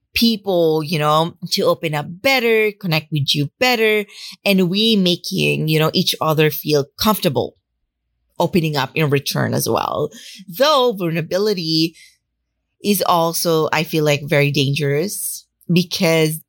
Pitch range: 145-185 Hz